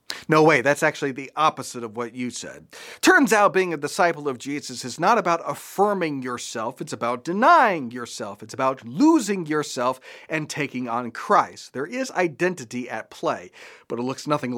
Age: 40-59